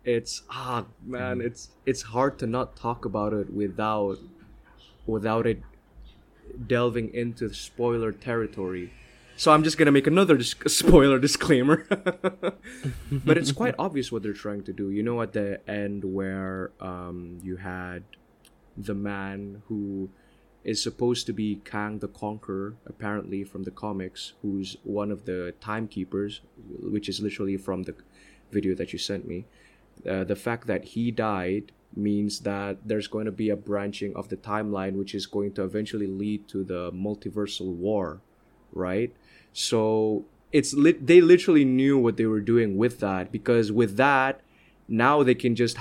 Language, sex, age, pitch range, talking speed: English, male, 20-39, 100-120 Hz, 160 wpm